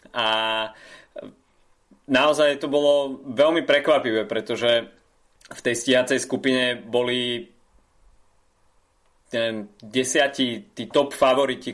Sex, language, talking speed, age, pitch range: male, Slovak, 85 wpm, 20-39, 110-130 Hz